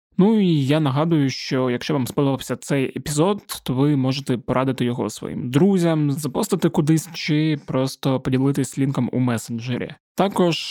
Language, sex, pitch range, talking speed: Ukrainian, male, 130-160 Hz, 145 wpm